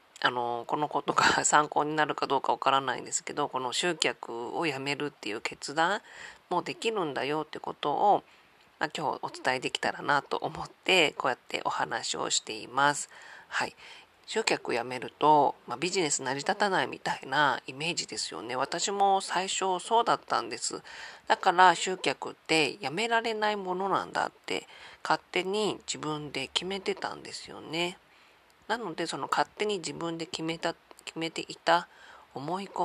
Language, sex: Japanese, female